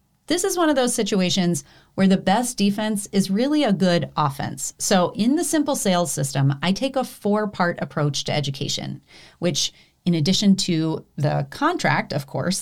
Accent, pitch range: American, 155-215 Hz